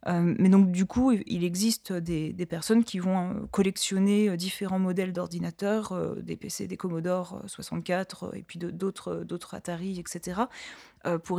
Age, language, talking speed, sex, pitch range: 20-39, French, 150 wpm, female, 180-200 Hz